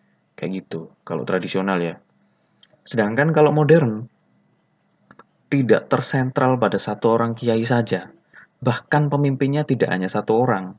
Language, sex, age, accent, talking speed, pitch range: Indonesian, male, 20-39, native, 115 wpm, 95-120 Hz